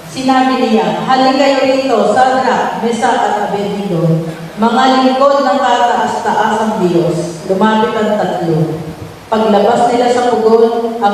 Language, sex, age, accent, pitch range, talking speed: Filipino, female, 40-59, native, 205-240 Hz, 130 wpm